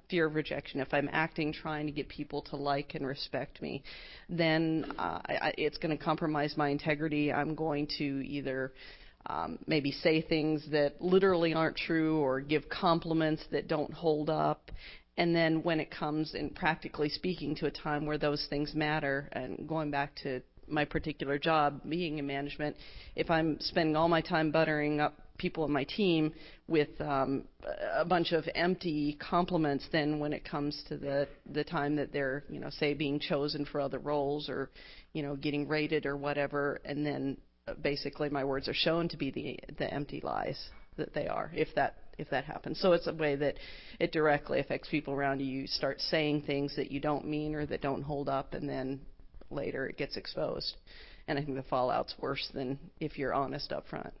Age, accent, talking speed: 40-59, American, 195 wpm